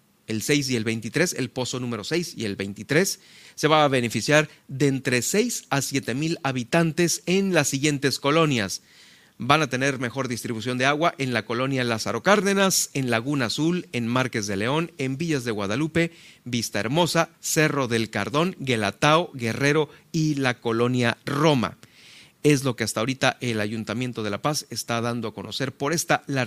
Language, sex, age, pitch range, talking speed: Spanish, male, 40-59, 120-155 Hz, 175 wpm